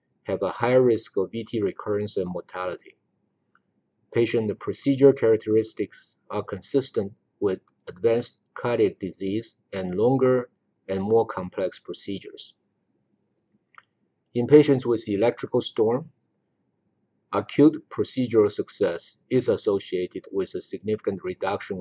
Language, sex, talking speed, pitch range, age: English, male, 105 wpm, 100-130 Hz, 50-69